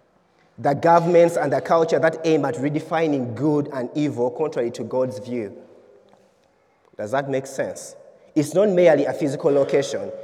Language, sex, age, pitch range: English, male, 30-49, 135-180 Hz